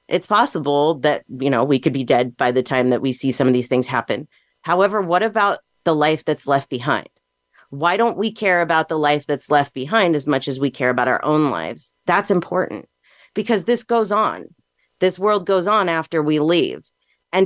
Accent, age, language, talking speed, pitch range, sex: American, 40-59, English, 210 wpm, 140-185 Hz, female